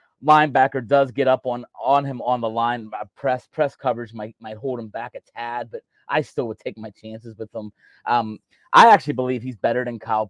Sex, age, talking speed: male, 30-49, 215 wpm